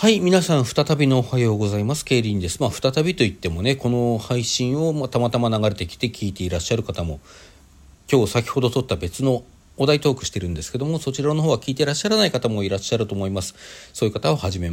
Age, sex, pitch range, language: 40-59, male, 85-130 Hz, Japanese